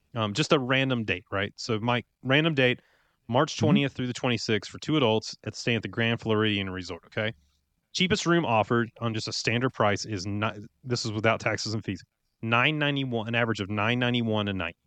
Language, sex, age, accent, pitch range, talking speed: English, male, 30-49, American, 105-135 Hz, 205 wpm